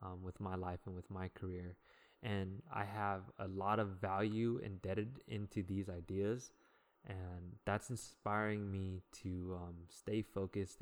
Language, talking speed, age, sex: English, 150 wpm, 20-39, male